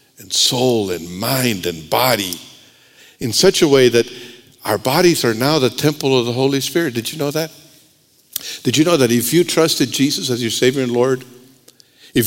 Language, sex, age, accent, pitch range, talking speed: English, male, 60-79, American, 135-190 Hz, 185 wpm